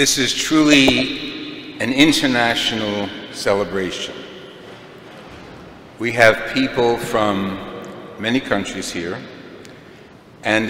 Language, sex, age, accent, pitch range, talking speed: English, male, 50-69, American, 100-130 Hz, 80 wpm